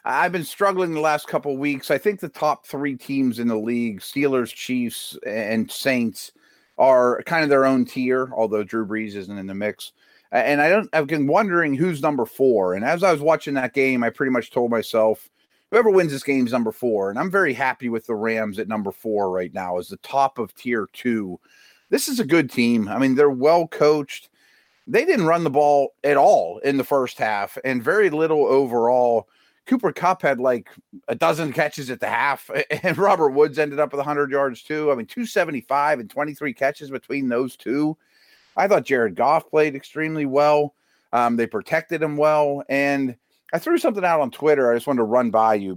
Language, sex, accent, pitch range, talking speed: English, male, American, 120-155 Hz, 205 wpm